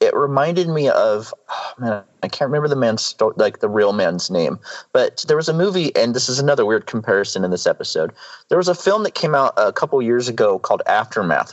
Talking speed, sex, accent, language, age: 230 wpm, male, American, English, 30-49